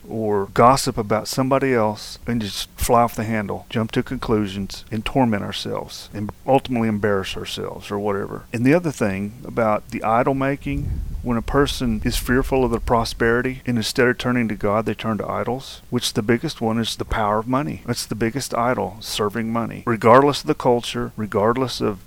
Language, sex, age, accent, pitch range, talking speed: English, male, 40-59, American, 105-130 Hz, 190 wpm